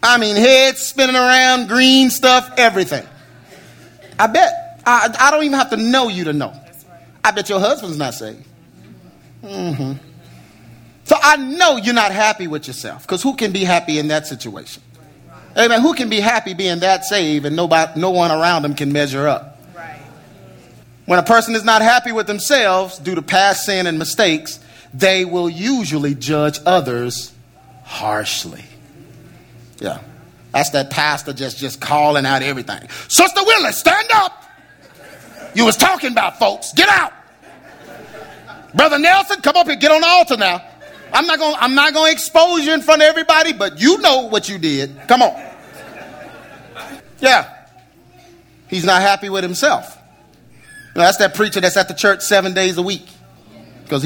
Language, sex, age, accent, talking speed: English, male, 30-49, American, 160 wpm